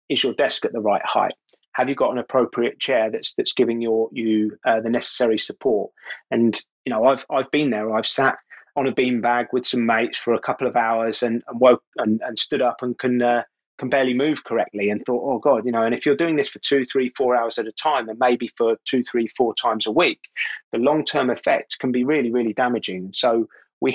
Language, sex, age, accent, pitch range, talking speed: English, male, 20-39, British, 110-125 Hz, 235 wpm